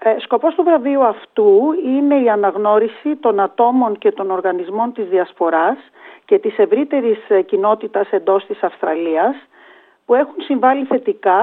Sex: female